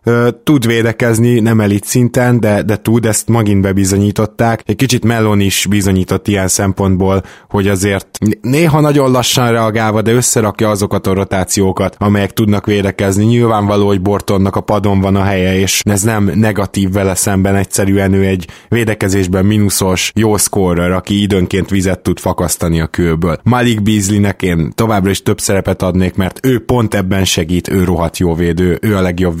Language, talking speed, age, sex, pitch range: Hungarian, 165 wpm, 20-39, male, 95-110 Hz